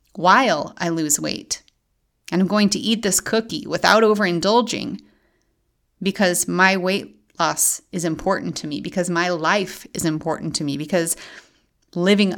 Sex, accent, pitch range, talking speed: female, American, 175-230 Hz, 145 wpm